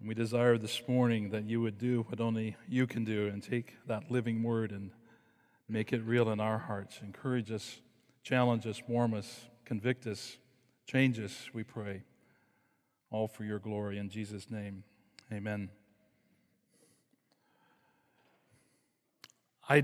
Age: 40-59